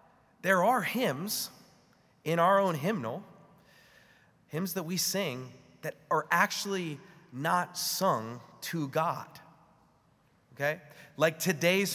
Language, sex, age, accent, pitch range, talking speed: English, male, 30-49, American, 155-205 Hz, 105 wpm